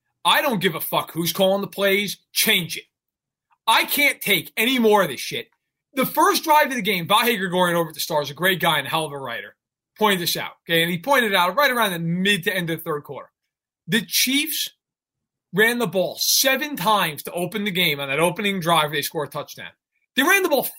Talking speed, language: 235 wpm, English